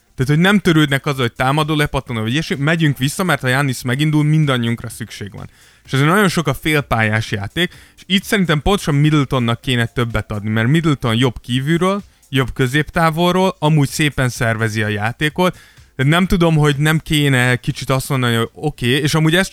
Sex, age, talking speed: male, 20-39, 185 wpm